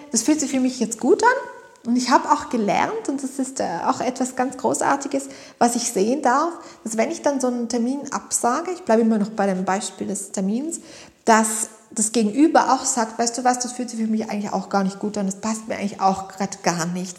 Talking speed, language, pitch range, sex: 235 wpm, German, 195-245 Hz, female